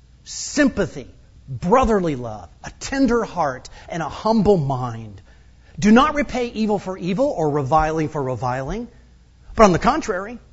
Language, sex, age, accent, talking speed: English, male, 50-69, American, 135 wpm